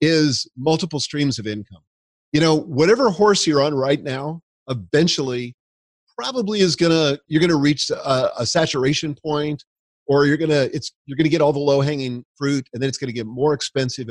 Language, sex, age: English, male, 40-59